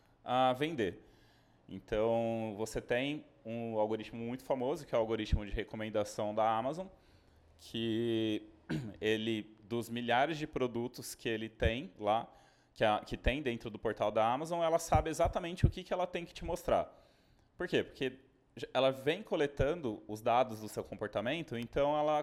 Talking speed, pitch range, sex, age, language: 160 wpm, 110-155 Hz, male, 20-39, Portuguese